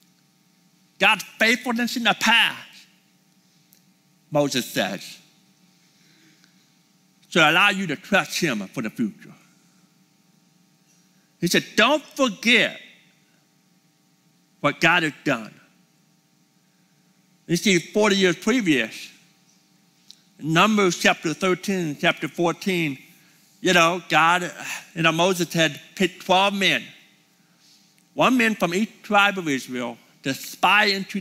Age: 60-79